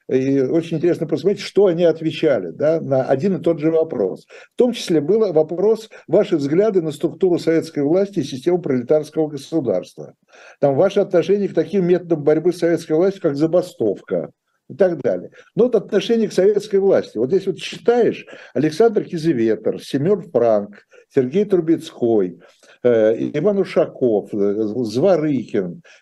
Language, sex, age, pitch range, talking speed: Russian, male, 60-79, 135-190 Hz, 150 wpm